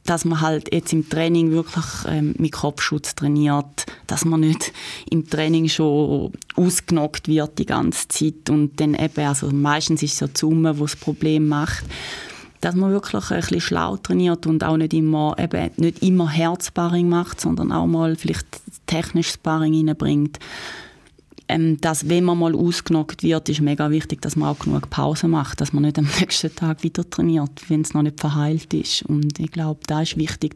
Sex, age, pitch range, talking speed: female, 20-39, 145-160 Hz, 185 wpm